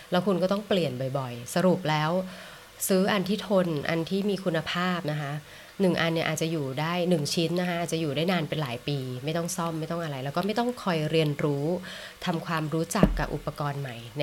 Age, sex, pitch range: 20-39, female, 150-180 Hz